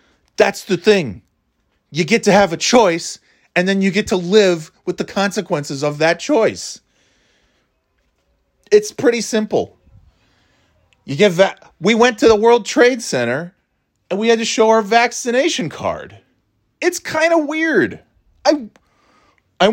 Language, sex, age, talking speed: English, male, 30-49, 150 wpm